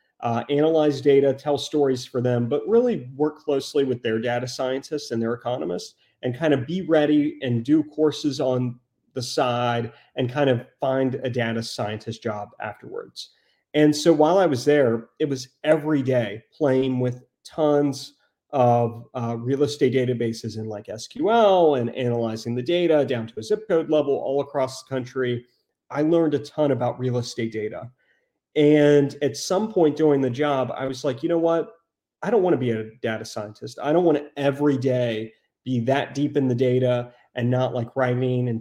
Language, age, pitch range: English, 30-49, 120-145 Hz